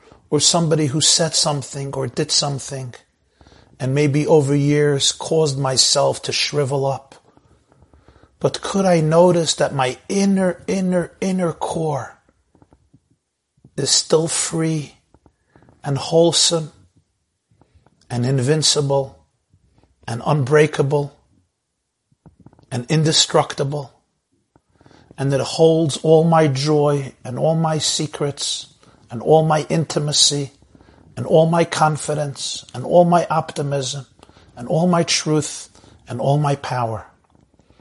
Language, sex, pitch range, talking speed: English, male, 130-160 Hz, 110 wpm